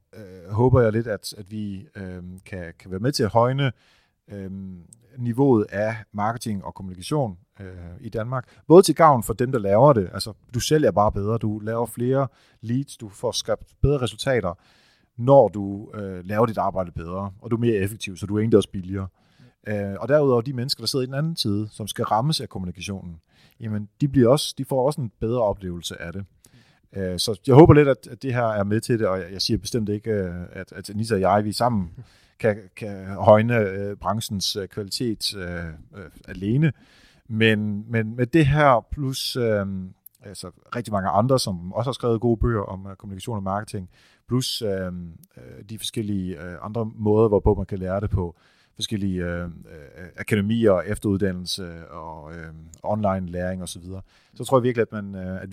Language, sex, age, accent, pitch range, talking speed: Danish, male, 40-59, native, 95-120 Hz, 180 wpm